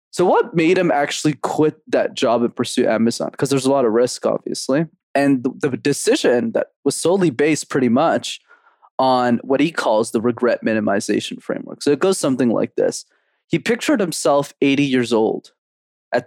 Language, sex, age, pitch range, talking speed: English, male, 20-39, 120-150 Hz, 180 wpm